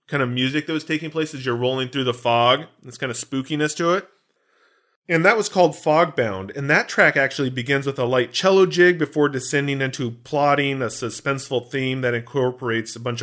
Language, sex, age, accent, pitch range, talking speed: English, male, 40-59, American, 120-155 Hz, 205 wpm